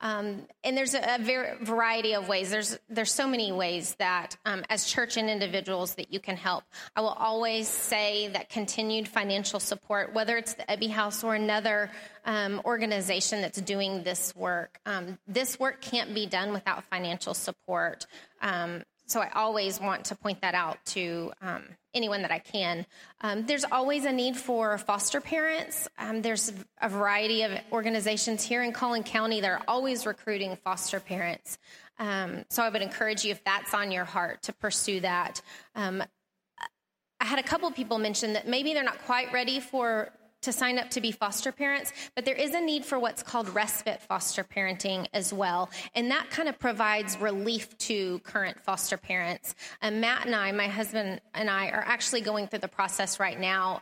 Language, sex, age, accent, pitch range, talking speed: English, female, 30-49, American, 195-235 Hz, 185 wpm